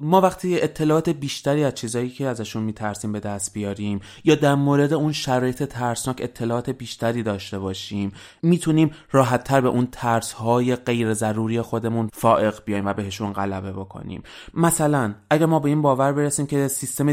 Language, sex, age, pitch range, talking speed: Persian, male, 20-39, 110-135 Hz, 165 wpm